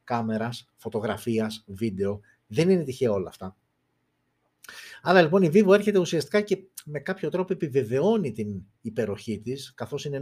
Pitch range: 110-145 Hz